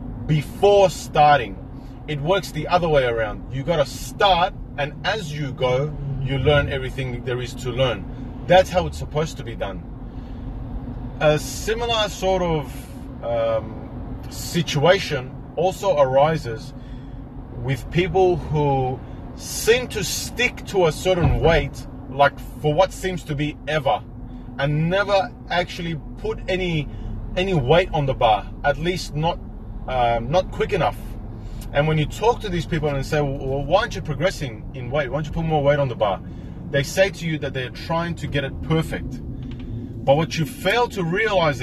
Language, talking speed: English, 165 wpm